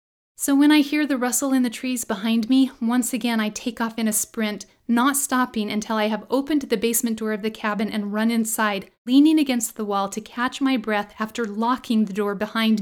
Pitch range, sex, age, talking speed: 215-255 Hz, female, 30-49, 220 wpm